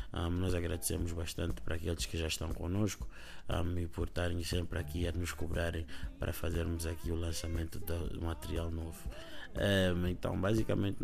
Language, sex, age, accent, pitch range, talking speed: Portuguese, male, 20-39, Brazilian, 85-95 Hz, 145 wpm